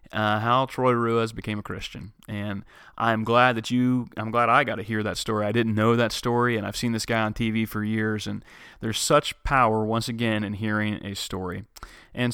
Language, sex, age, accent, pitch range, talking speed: English, male, 30-49, American, 105-120 Hz, 220 wpm